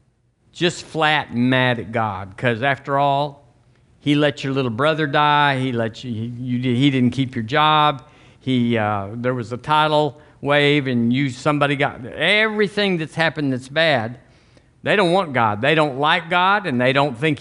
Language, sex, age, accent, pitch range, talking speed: English, male, 50-69, American, 125-155 Hz, 180 wpm